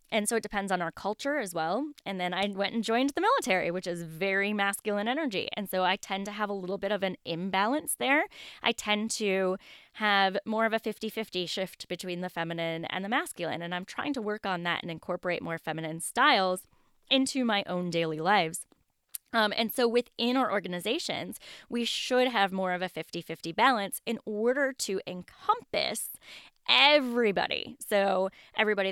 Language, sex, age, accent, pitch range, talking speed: English, female, 10-29, American, 180-230 Hz, 185 wpm